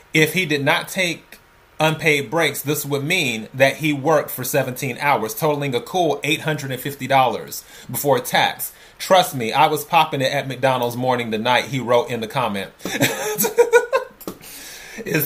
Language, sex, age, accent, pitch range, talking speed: English, male, 30-49, American, 130-160 Hz, 150 wpm